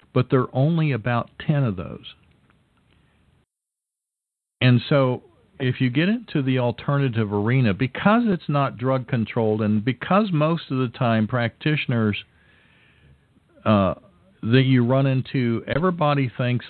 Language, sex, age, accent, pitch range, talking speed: English, male, 50-69, American, 105-130 Hz, 130 wpm